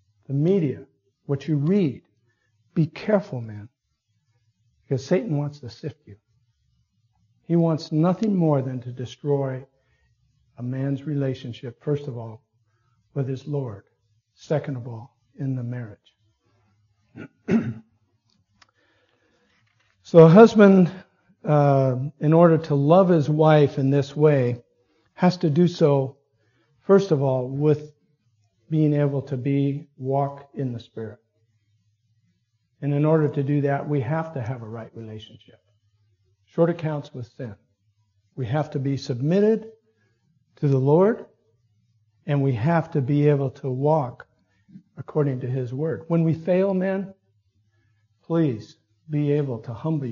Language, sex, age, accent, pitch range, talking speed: English, male, 60-79, American, 110-150 Hz, 135 wpm